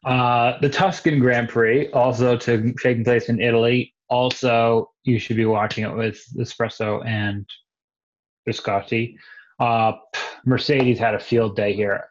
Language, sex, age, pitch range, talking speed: English, male, 30-49, 110-125 Hz, 135 wpm